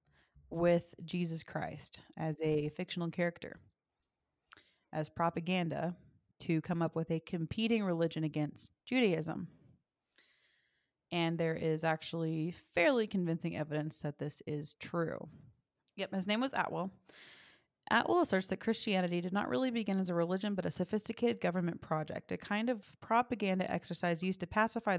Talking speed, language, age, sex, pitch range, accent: 140 wpm, English, 30-49, female, 160-190 Hz, American